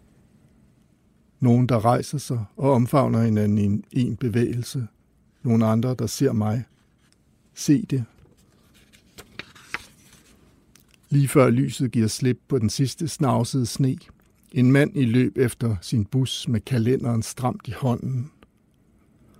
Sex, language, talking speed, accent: male, Danish, 125 wpm, native